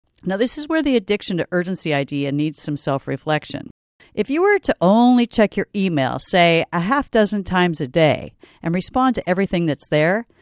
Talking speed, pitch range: 190 wpm, 150-225 Hz